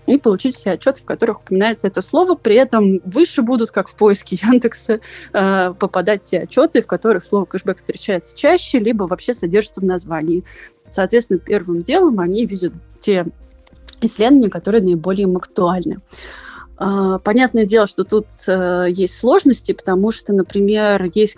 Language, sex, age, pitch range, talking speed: Russian, female, 20-39, 185-235 Hz, 150 wpm